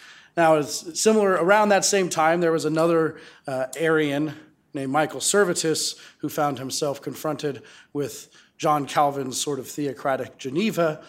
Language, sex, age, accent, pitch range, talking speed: English, male, 30-49, American, 140-160 Hz, 140 wpm